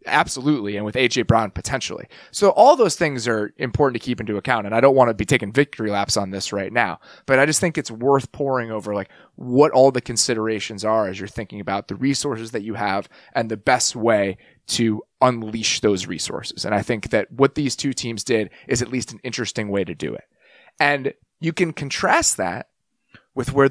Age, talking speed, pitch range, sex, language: 30-49, 215 wpm, 110-155 Hz, male, English